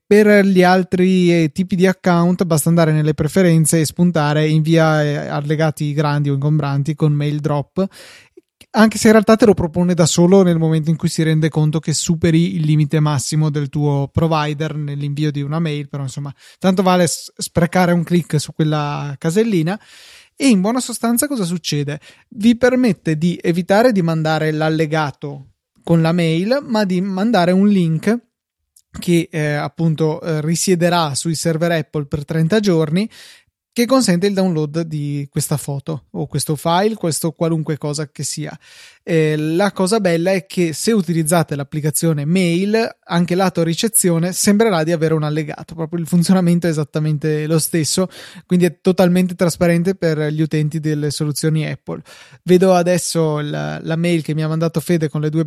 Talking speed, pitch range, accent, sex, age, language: 165 wpm, 155-185 Hz, native, male, 20-39, Italian